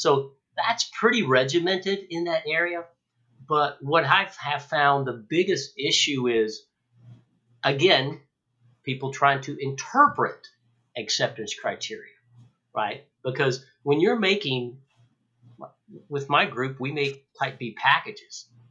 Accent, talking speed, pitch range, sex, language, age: American, 115 wpm, 120-165 Hz, male, English, 50-69